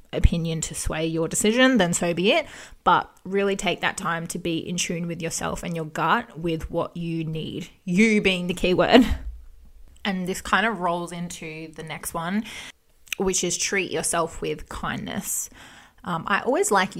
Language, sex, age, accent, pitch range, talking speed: English, female, 20-39, Australian, 165-195 Hz, 180 wpm